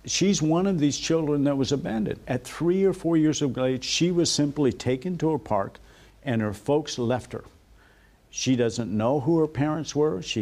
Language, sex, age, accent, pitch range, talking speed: English, male, 50-69, American, 110-145 Hz, 200 wpm